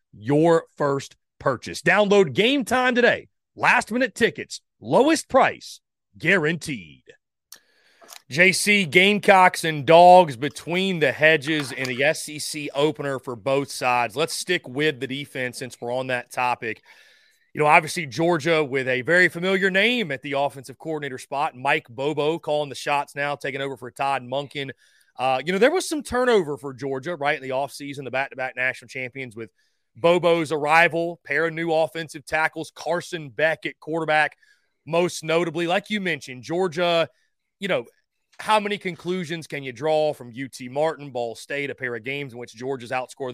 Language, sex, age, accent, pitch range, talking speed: English, male, 30-49, American, 135-170 Hz, 160 wpm